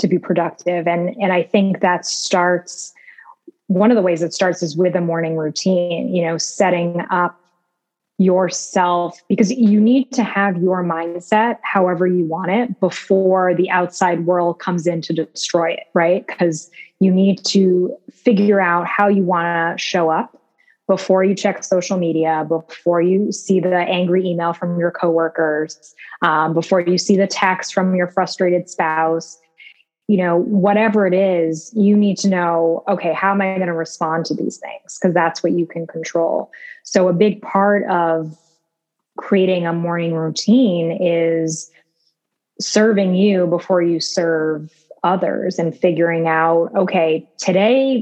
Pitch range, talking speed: 170-195 Hz, 160 wpm